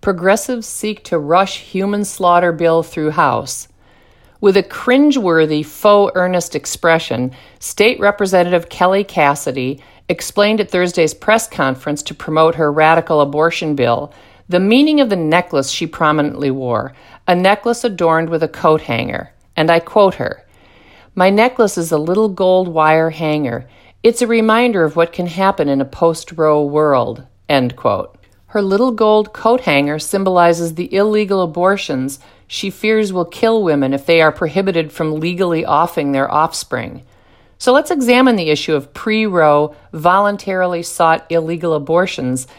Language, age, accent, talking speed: English, 50-69, American, 145 wpm